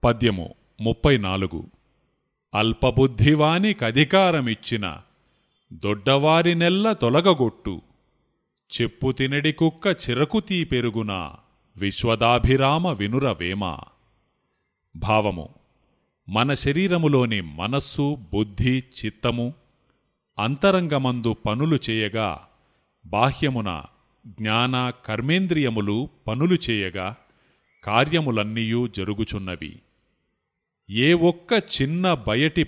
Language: Telugu